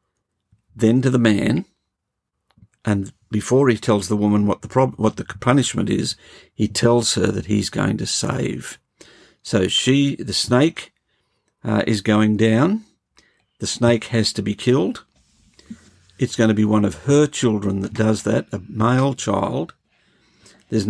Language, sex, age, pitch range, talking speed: English, male, 50-69, 105-120 Hz, 155 wpm